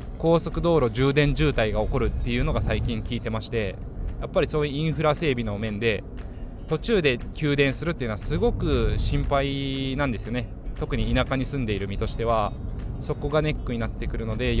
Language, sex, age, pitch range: Japanese, male, 20-39, 105-135 Hz